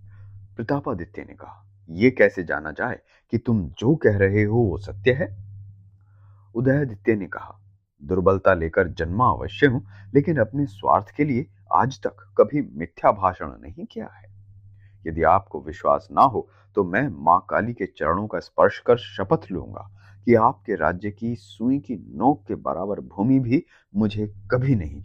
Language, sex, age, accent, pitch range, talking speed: Hindi, male, 30-49, native, 100-115 Hz, 165 wpm